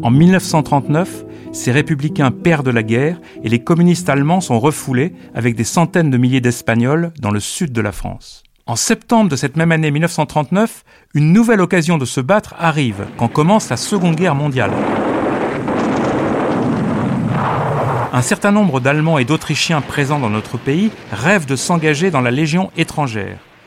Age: 40-59